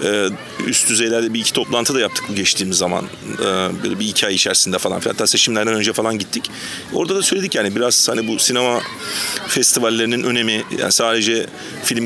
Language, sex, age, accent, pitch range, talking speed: Turkish, male, 40-59, native, 110-120 Hz, 180 wpm